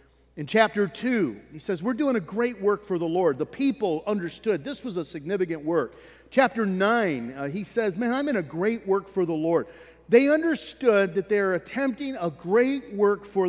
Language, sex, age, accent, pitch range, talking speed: English, male, 40-59, American, 170-225 Hz, 195 wpm